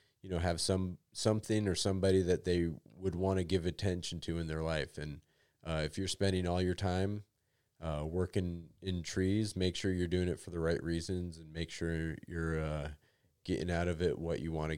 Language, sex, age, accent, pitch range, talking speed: English, male, 30-49, American, 85-100 Hz, 210 wpm